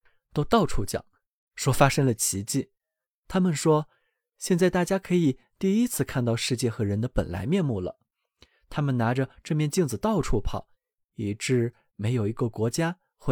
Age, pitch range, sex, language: 20-39, 115-175 Hz, male, Chinese